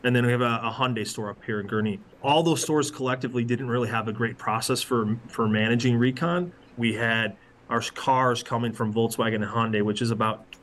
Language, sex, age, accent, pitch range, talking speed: English, male, 30-49, American, 120-140 Hz, 215 wpm